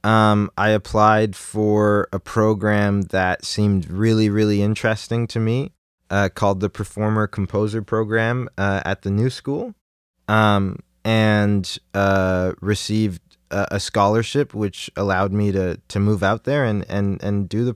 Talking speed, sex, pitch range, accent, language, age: 150 wpm, male, 100-120 Hz, American, English, 20-39